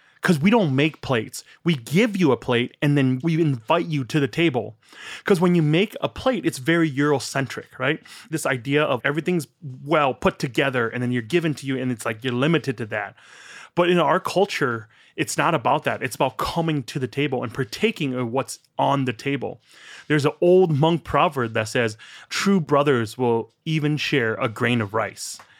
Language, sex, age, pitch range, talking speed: English, male, 30-49, 125-165 Hz, 200 wpm